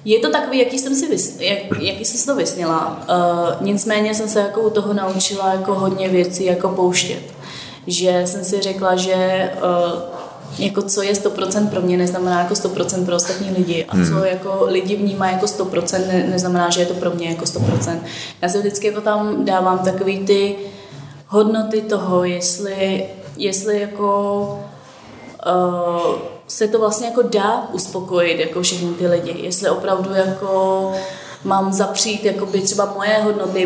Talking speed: 165 wpm